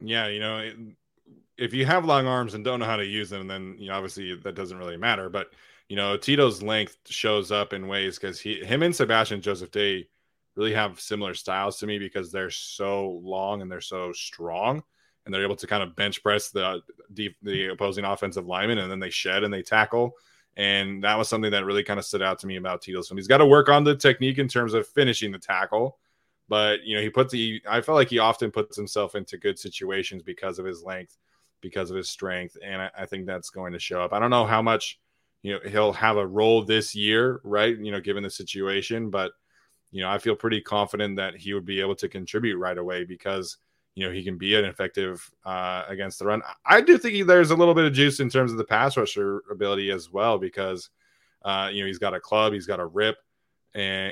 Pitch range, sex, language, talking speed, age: 95-110 Hz, male, English, 240 wpm, 20-39